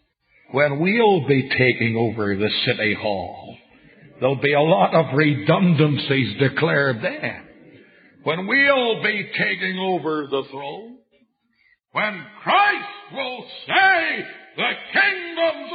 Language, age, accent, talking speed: English, 50-69, American, 110 wpm